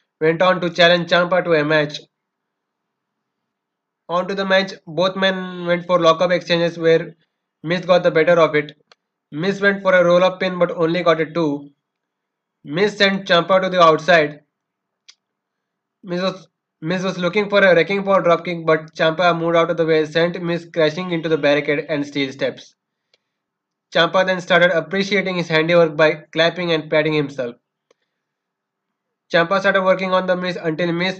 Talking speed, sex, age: 170 wpm, male, 20-39